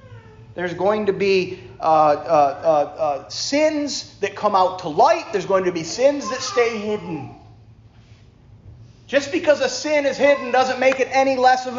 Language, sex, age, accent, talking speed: English, male, 40-59, American, 175 wpm